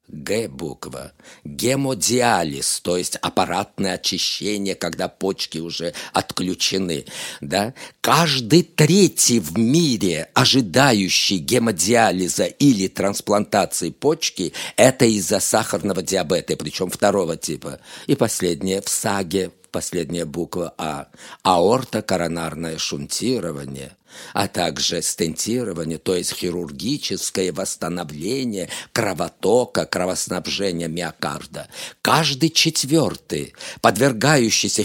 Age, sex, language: 50-69, male, Russian